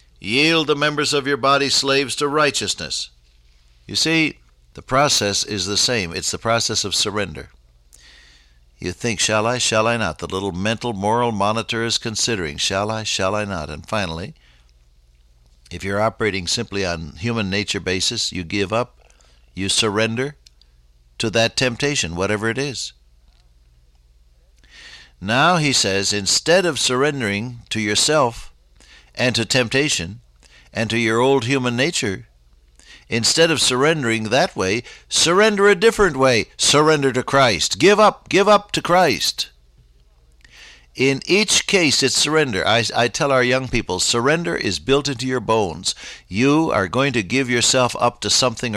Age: 60-79